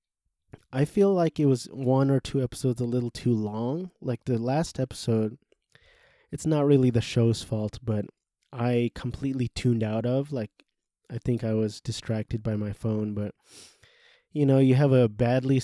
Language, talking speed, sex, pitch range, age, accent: English, 175 wpm, male, 110-130 Hz, 20-39, American